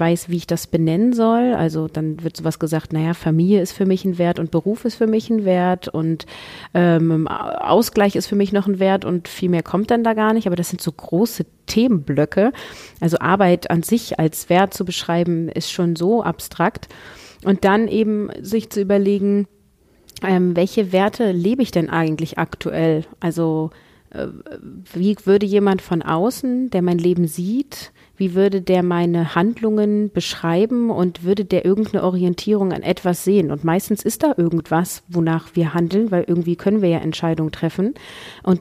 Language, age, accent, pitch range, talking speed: German, 30-49, German, 165-200 Hz, 180 wpm